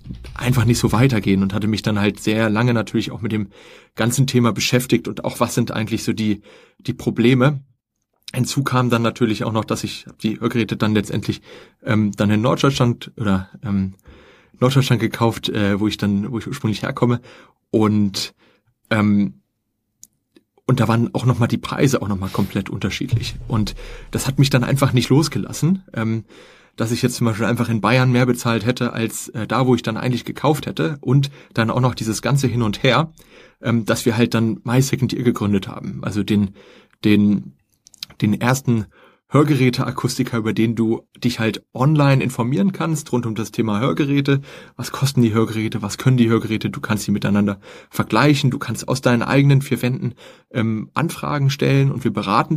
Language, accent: German, German